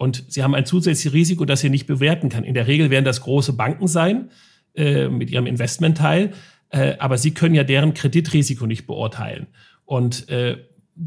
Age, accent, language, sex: 40-59, German, German, male